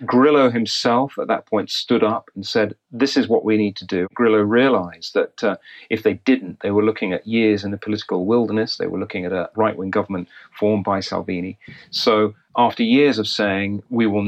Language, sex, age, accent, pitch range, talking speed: English, male, 40-59, British, 100-120 Hz, 205 wpm